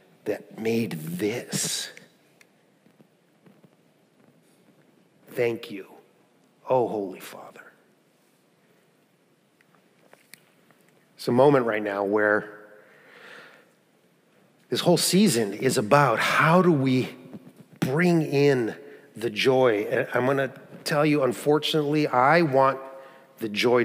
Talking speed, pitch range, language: 90 wpm, 120-155 Hz, English